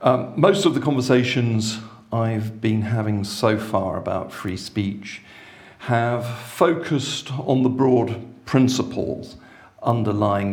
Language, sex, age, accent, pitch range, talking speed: English, male, 50-69, British, 105-125 Hz, 115 wpm